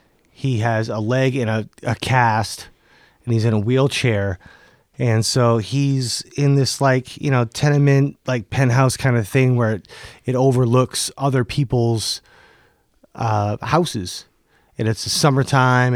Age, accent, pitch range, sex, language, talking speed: 30-49, American, 115-135 Hz, male, English, 145 wpm